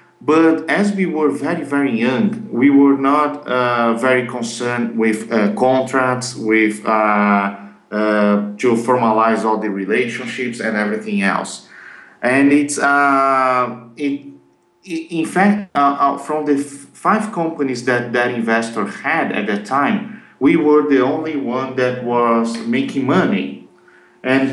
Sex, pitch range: male, 115-145 Hz